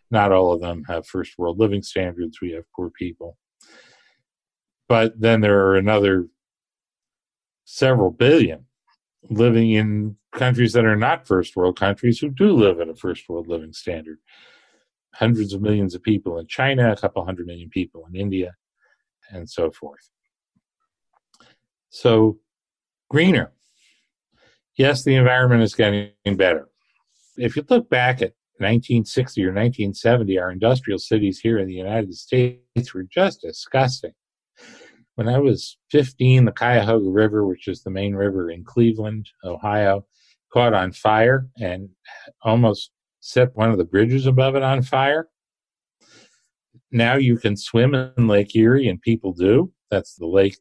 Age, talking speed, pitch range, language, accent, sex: 50-69, 145 wpm, 95-125 Hz, English, American, male